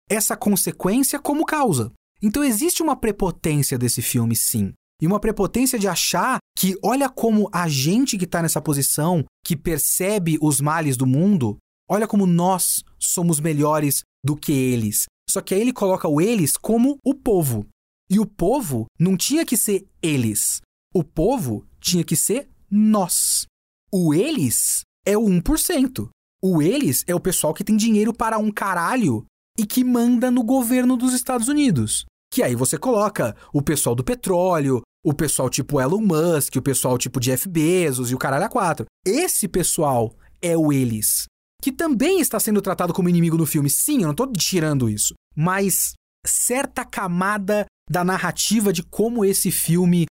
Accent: Brazilian